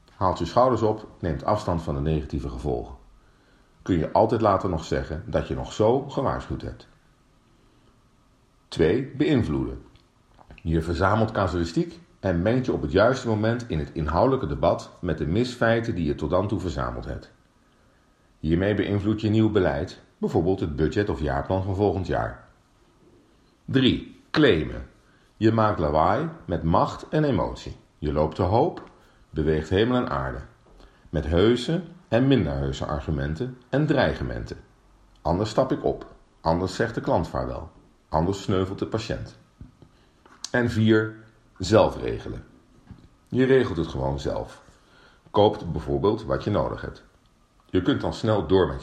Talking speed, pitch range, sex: 145 wpm, 80-110 Hz, male